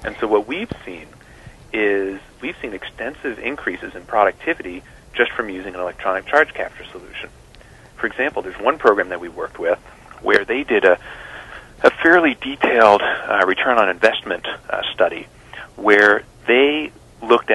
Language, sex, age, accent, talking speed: English, male, 40-59, American, 155 wpm